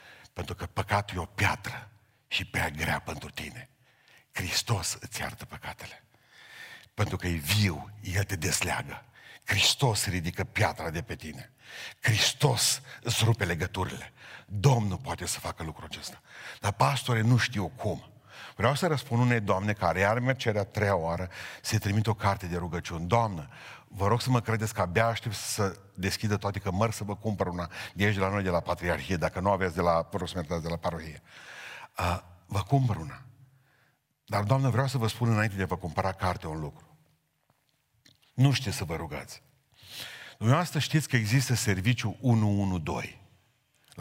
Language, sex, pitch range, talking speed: Romanian, male, 90-120 Hz, 165 wpm